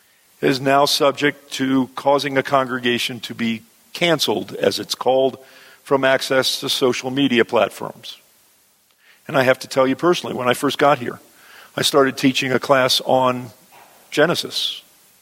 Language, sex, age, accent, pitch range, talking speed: English, male, 50-69, American, 120-140 Hz, 150 wpm